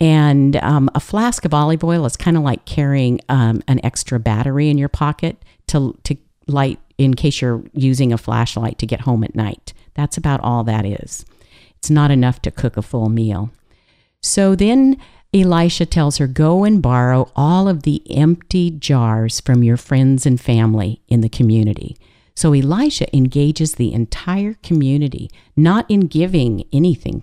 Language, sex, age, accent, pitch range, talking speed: English, female, 50-69, American, 115-155 Hz, 170 wpm